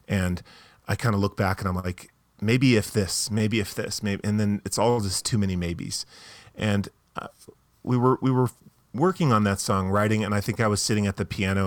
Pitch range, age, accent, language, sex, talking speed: 95-115 Hz, 30-49, American, English, male, 220 wpm